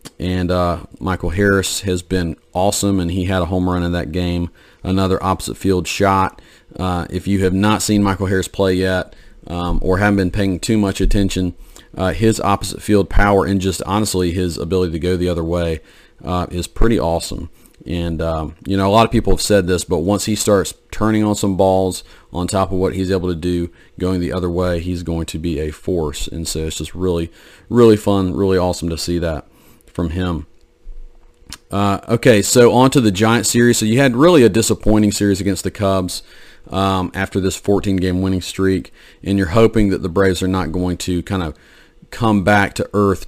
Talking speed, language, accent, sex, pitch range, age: 205 wpm, English, American, male, 85-100 Hz, 40-59